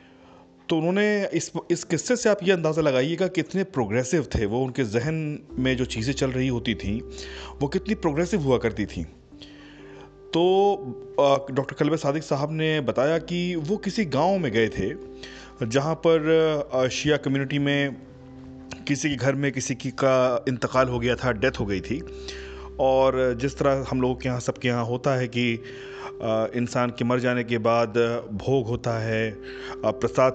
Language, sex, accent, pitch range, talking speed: Hindi, male, native, 120-155 Hz, 170 wpm